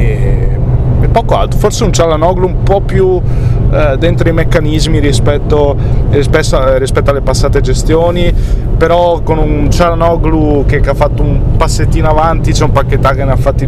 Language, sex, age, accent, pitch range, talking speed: Italian, male, 20-39, native, 120-140 Hz, 155 wpm